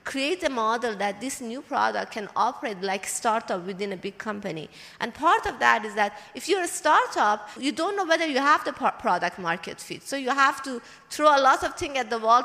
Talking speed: 225 wpm